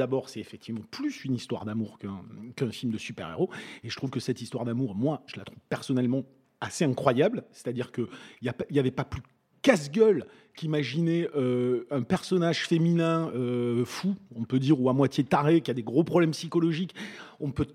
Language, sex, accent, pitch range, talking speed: French, male, French, 130-185 Hz, 185 wpm